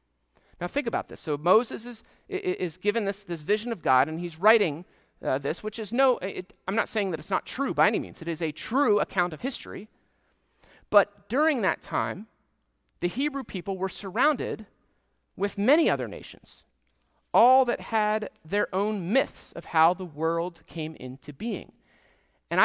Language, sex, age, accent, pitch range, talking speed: English, male, 40-59, American, 160-225 Hz, 180 wpm